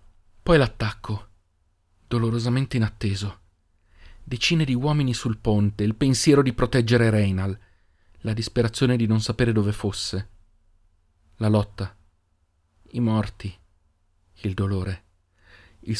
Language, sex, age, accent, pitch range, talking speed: Italian, male, 40-59, native, 90-125 Hz, 105 wpm